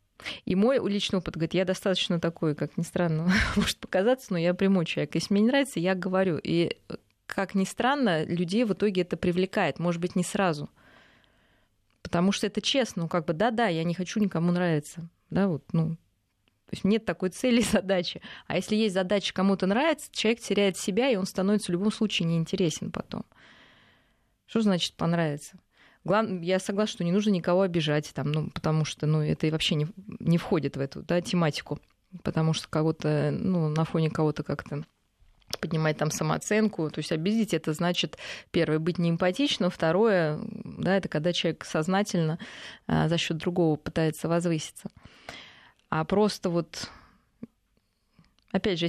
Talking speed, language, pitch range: 170 wpm, Russian, 165-200 Hz